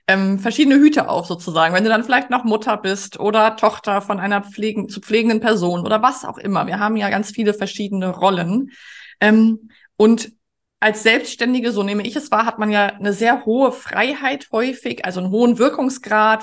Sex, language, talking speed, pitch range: female, German, 185 wpm, 205-235 Hz